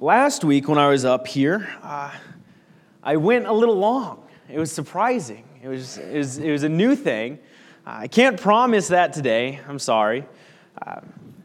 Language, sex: English, male